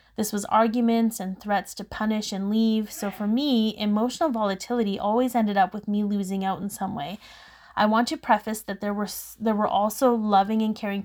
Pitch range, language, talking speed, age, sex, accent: 195-230 Hz, English, 200 wpm, 20-39, female, American